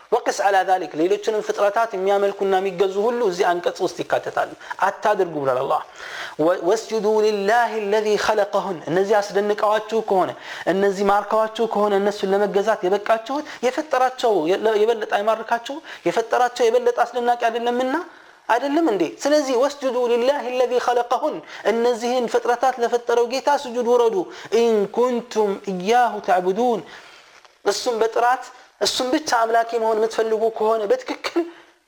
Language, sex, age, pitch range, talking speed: Amharic, male, 30-49, 200-245 Hz, 115 wpm